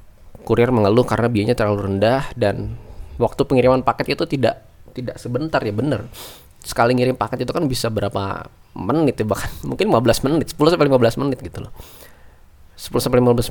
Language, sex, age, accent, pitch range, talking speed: Indonesian, male, 20-39, native, 105-125 Hz, 170 wpm